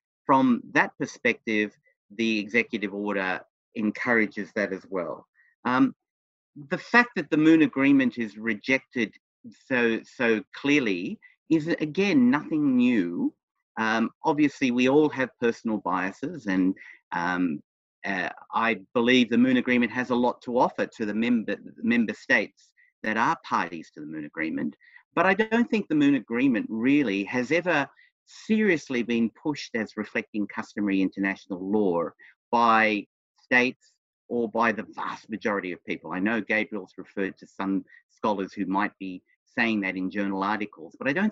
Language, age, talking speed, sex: English, 50-69, 150 wpm, male